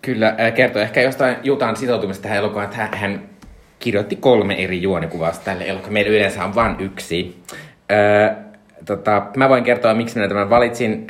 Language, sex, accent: Finnish, male, native